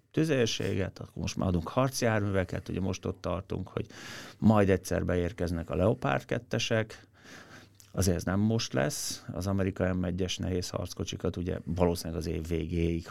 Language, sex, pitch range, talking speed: Hungarian, male, 95-115 Hz, 140 wpm